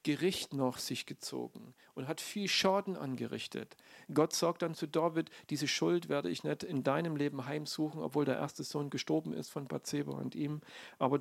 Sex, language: male, German